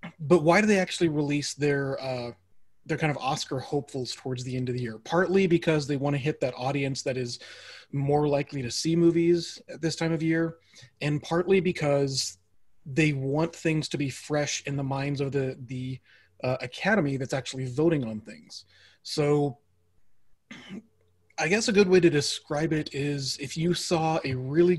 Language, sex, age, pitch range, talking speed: English, male, 30-49, 130-160 Hz, 185 wpm